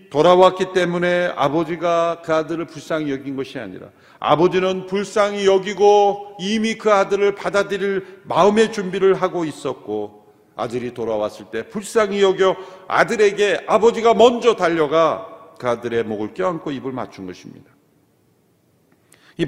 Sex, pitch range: male, 135-195 Hz